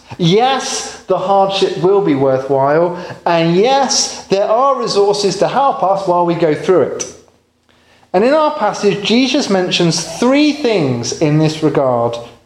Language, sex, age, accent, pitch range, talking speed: English, male, 30-49, British, 140-210 Hz, 145 wpm